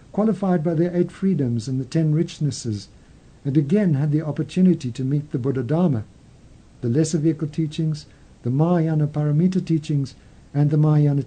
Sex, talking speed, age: male, 160 wpm, 60-79